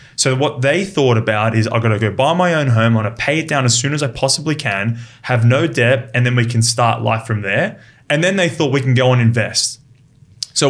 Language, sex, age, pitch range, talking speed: English, male, 20-39, 120-140 Hz, 265 wpm